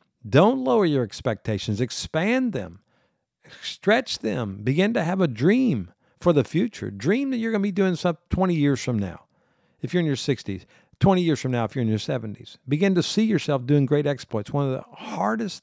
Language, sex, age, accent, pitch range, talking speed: English, male, 50-69, American, 120-155 Hz, 205 wpm